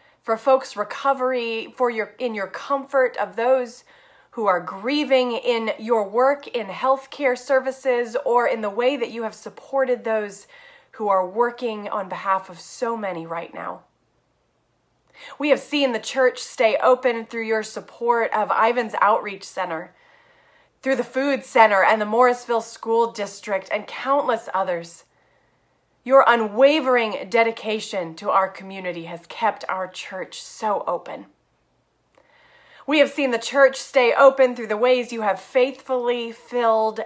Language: English